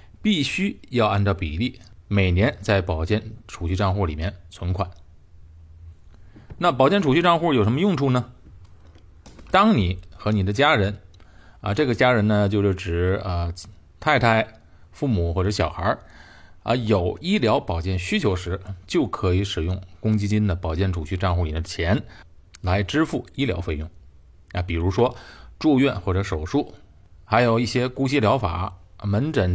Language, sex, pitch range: Chinese, male, 90-120 Hz